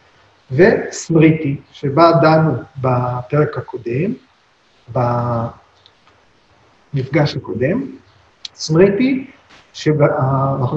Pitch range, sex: 145-170 Hz, male